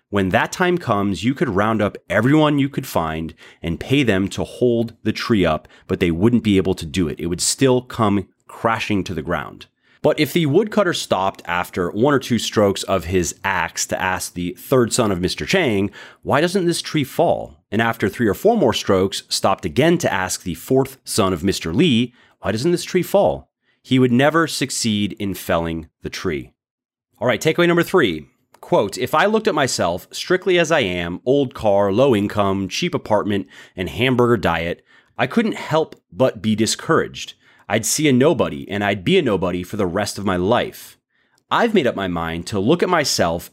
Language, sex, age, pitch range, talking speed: English, male, 30-49, 95-130 Hz, 200 wpm